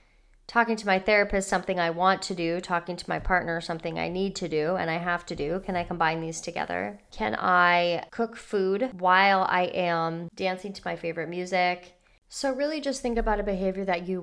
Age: 20-39